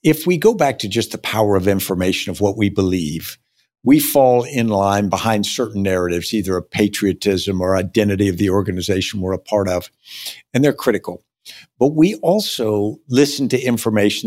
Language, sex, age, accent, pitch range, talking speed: English, male, 60-79, American, 100-115 Hz, 175 wpm